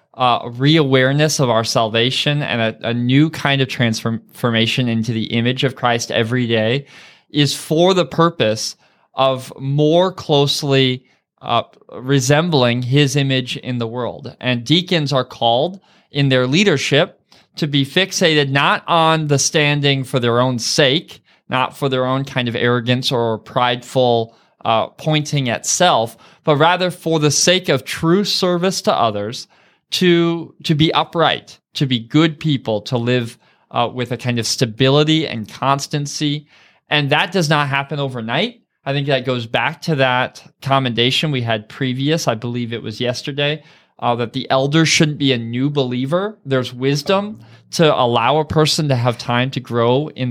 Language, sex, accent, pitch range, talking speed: English, male, American, 120-155 Hz, 160 wpm